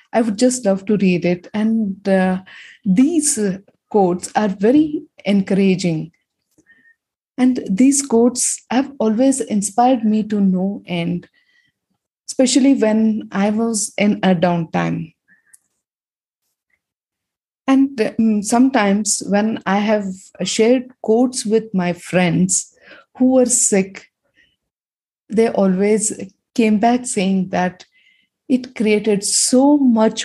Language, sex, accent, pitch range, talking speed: English, female, Indian, 185-240 Hz, 110 wpm